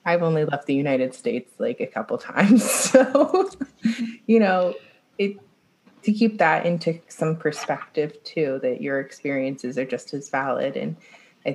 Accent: American